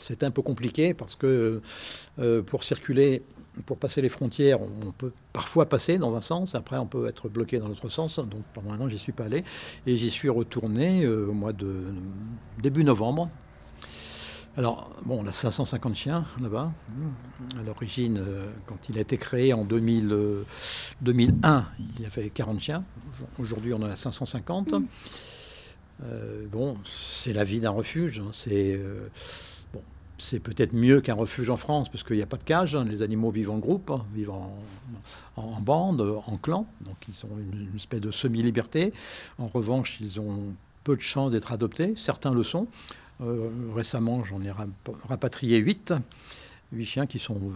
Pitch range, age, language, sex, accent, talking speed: 105-135 Hz, 60-79, French, male, French, 180 wpm